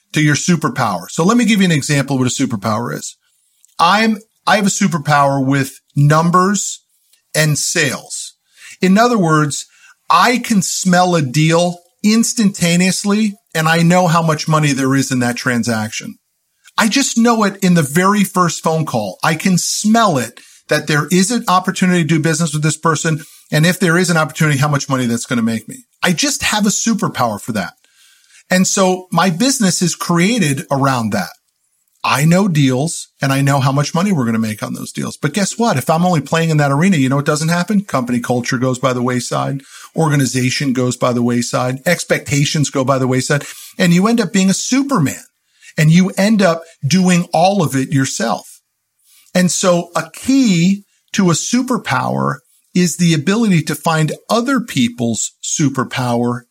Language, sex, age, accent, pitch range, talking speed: English, male, 50-69, American, 140-190 Hz, 190 wpm